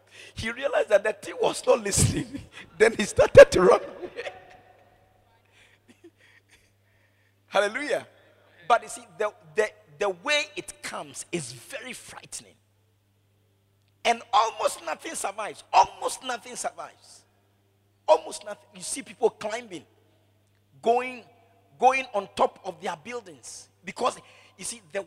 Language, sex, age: English, male, 50-69